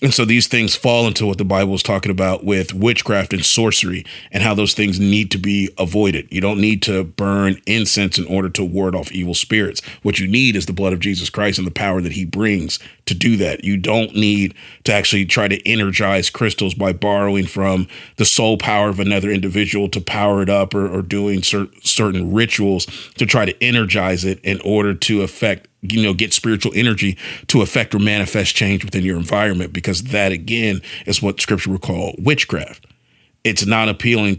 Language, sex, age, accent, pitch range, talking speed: English, male, 30-49, American, 95-110 Hz, 200 wpm